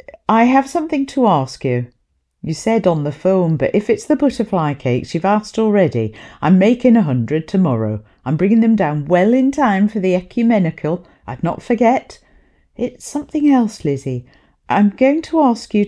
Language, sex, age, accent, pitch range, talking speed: English, female, 50-69, British, 145-230 Hz, 180 wpm